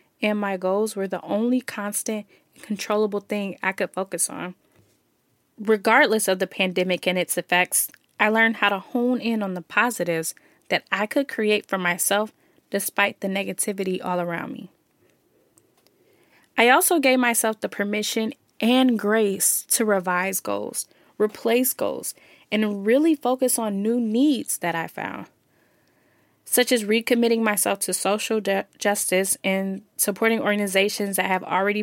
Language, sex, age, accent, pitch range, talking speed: English, female, 10-29, American, 190-225 Hz, 145 wpm